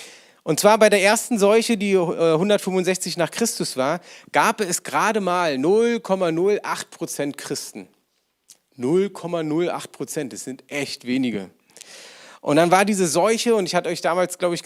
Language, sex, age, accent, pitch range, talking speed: German, male, 40-59, German, 150-205 Hz, 145 wpm